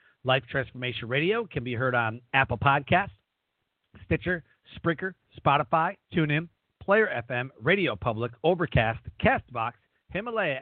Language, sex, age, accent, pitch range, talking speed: English, male, 40-59, American, 125-180 Hz, 115 wpm